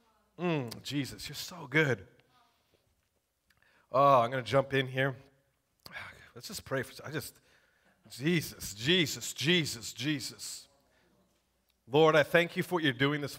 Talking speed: 140 wpm